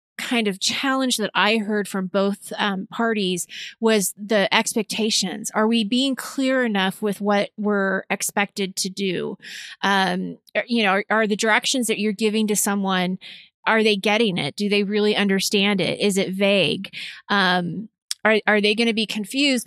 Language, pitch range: English, 195-225 Hz